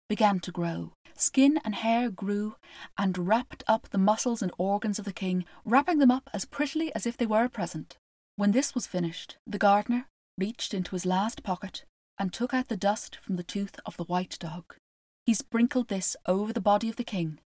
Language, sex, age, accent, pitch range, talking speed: English, female, 30-49, British, 195-260 Hz, 205 wpm